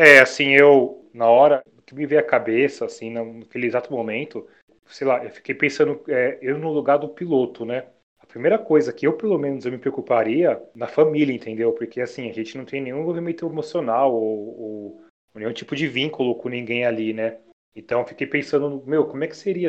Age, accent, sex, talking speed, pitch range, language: 30-49, Brazilian, male, 205 wpm, 120-140 Hz, Portuguese